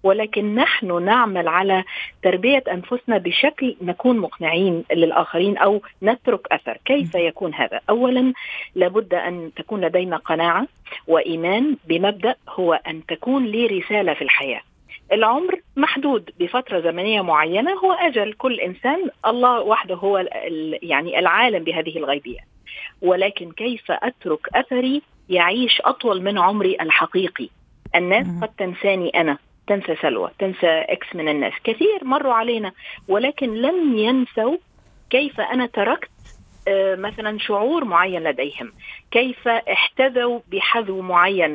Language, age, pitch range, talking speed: Arabic, 50-69, 175-245 Hz, 120 wpm